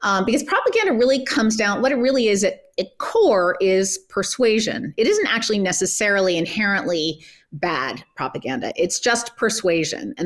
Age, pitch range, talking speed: 30-49, 175-230 Hz, 150 wpm